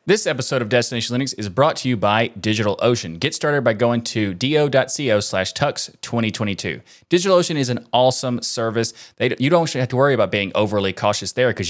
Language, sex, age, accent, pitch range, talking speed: English, male, 20-39, American, 110-135 Hz, 185 wpm